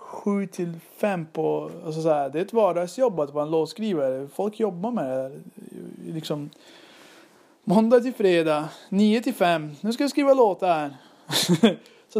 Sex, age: male, 30-49